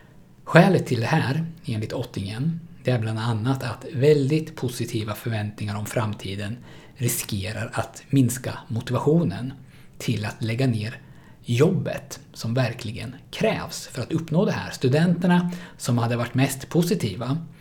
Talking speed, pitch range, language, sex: 135 wpm, 115-150 Hz, Swedish, male